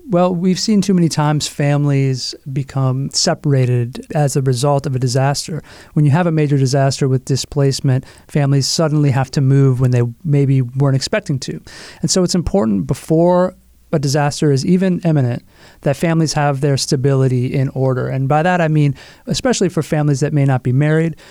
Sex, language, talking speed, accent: male, English, 180 wpm, American